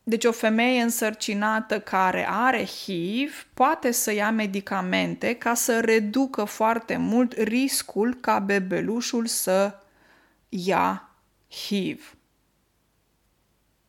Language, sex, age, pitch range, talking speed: Romanian, female, 20-39, 205-270 Hz, 95 wpm